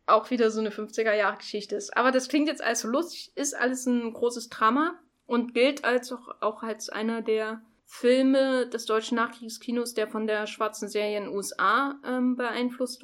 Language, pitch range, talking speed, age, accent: German, 210-250 Hz, 180 wpm, 10-29, German